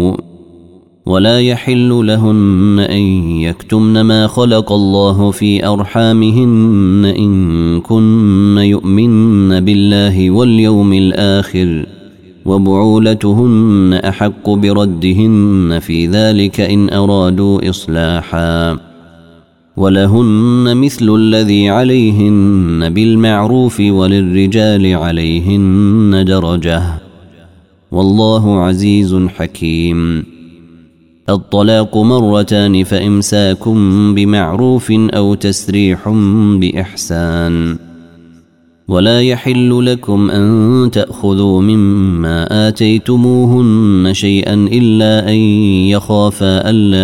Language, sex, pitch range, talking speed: Arabic, male, 90-110 Hz, 70 wpm